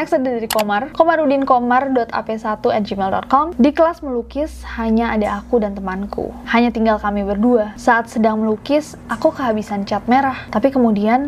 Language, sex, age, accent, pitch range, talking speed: Indonesian, female, 20-39, native, 210-255 Hz, 140 wpm